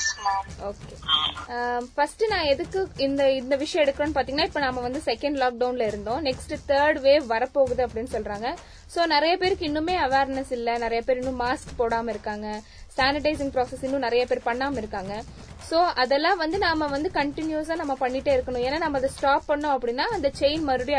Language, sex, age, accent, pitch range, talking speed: Tamil, female, 20-39, native, 245-305 Hz, 165 wpm